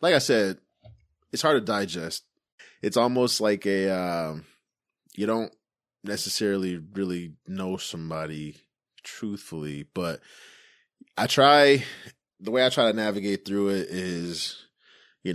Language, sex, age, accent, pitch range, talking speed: English, male, 20-39, American, 80-110 Hz, 120 wpm